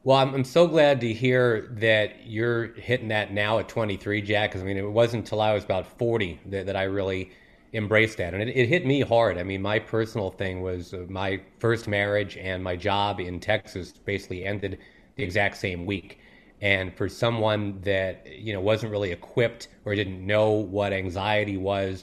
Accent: American